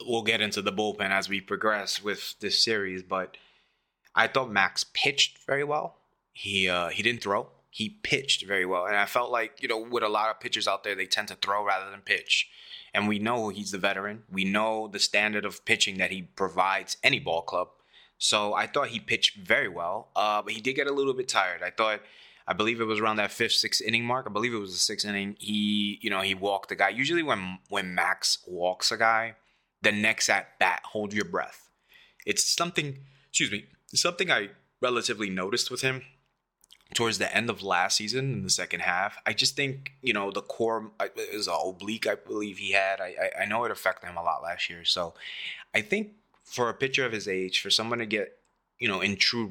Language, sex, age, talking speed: English, male, 20-39, 220 wpm